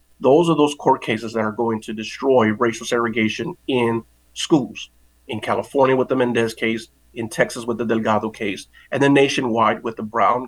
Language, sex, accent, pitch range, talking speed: English, male, American, 110-130 Hz, 185 wpm